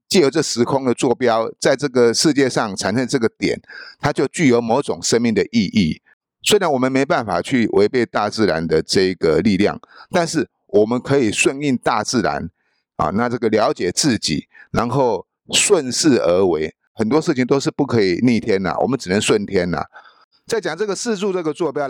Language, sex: Chinese, male